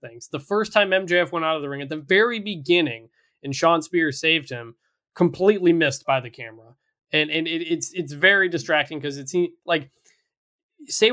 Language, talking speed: English, 190 wpm